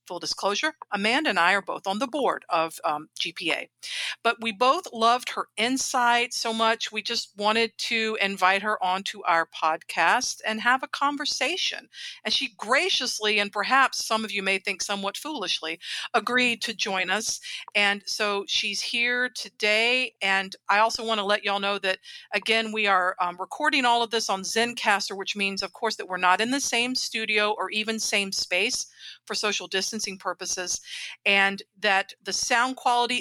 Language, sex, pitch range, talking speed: English, female, 195-240 Hz, 180 wpm